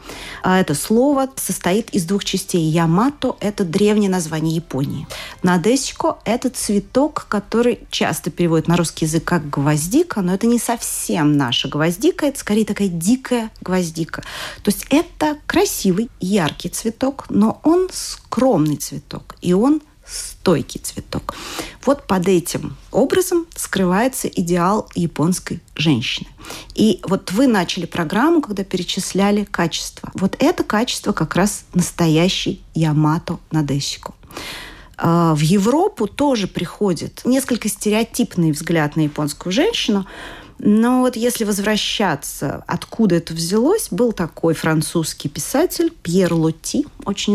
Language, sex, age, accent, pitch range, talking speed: Russian, female, 40-59, native, 165-240 Hz, 125 wpm